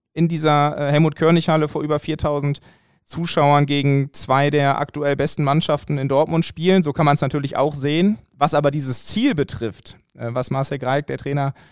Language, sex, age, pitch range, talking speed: German, male, 20-39, 135-160 Hz, 175 wpm